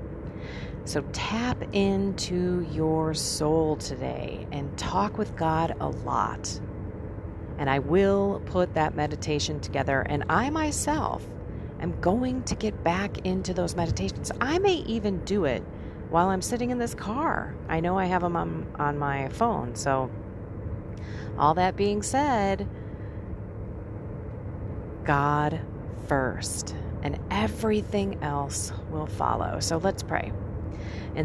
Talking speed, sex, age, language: 125 wpm, female, 40-59, English